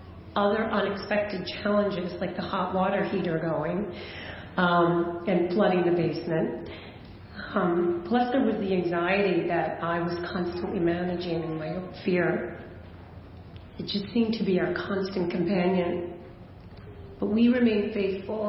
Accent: American